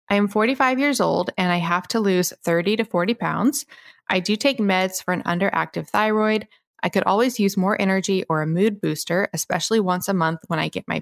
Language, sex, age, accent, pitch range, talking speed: English, female, 20-39, American, 180-225 Hz, 220 wpm